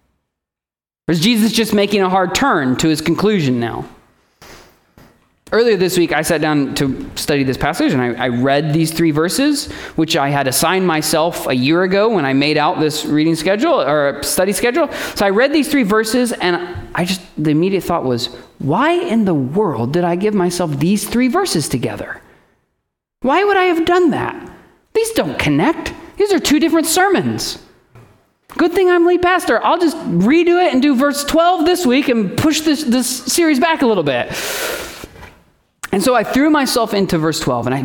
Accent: American